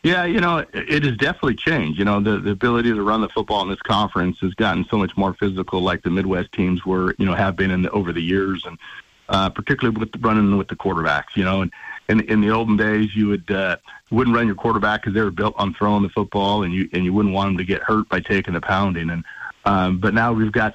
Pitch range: 95-115 Hz